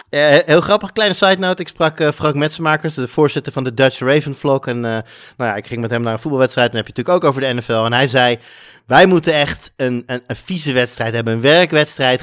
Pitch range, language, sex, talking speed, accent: 120-150 Hz, Dutch, male, 245 wpm, Dutch